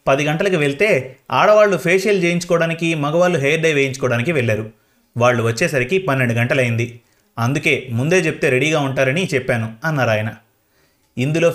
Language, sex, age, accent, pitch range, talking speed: Telugu, male, 30-49, native, 120-165 Hz, 125 wpm